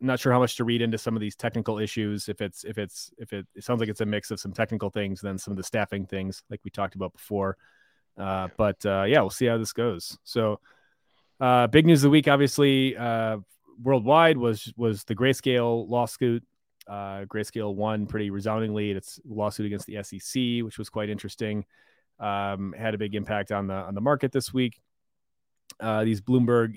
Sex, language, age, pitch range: male, English, 30-49, 100-120 Hz